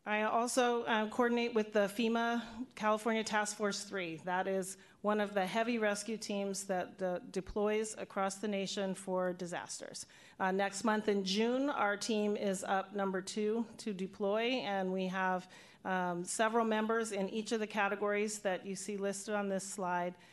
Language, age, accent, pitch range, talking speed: English, 40-59, American, 180-210 Hz, 170 wpm